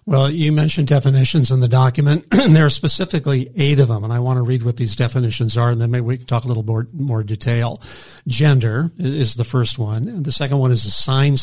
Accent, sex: American, male